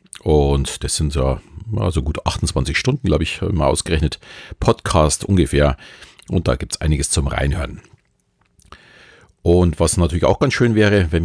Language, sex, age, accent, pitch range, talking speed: German, male, 40-59, German, 75-100 Hz, 155 wpm